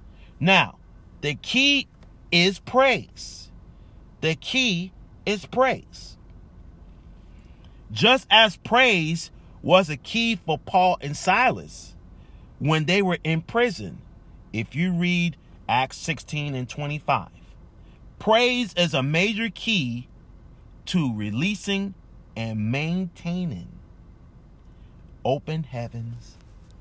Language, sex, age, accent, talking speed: English, male, 40-59, American, 95 wpm